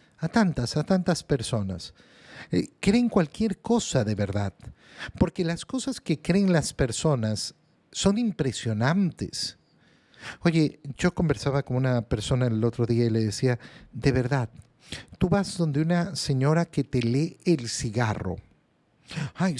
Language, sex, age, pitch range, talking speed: Spanish, male, 50-69, 125-175 Hz, 140 wpm